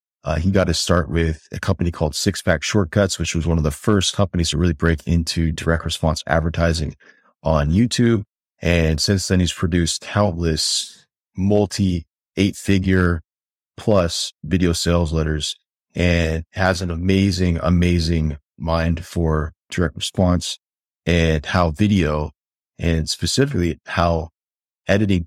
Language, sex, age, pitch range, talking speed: English, male, 30-49, 80-95 Hz, 135 wpm